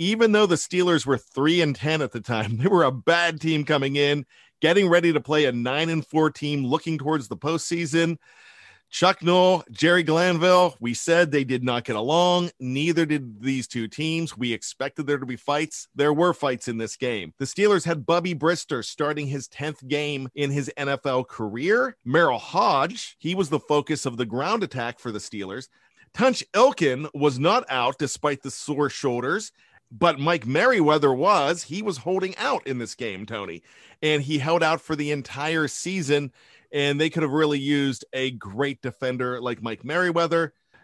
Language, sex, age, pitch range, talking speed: English, male, 40-59, 130-170 Hz, 185 wpm